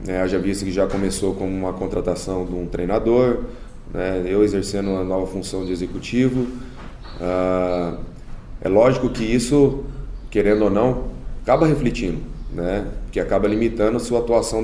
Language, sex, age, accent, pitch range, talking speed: Portuguese, male, 20-39, Brazilian, 95-115 Hz, 150 wpm